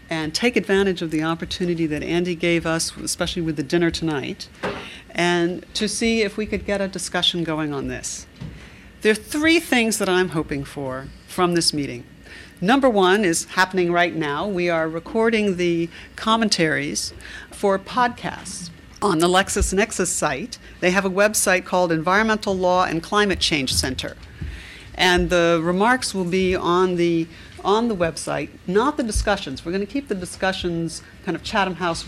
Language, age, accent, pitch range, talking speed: English, 60-79, American, 165-200 Hz, 165 wpm